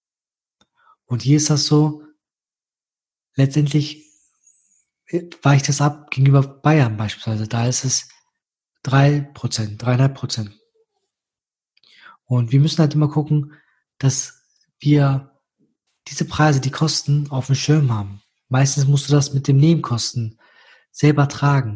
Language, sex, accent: German, male, German